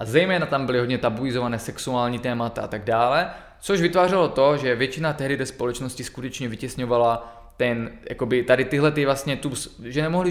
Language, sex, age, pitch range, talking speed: Czech, male, 20-39, 120-145 Hz, 175 wpm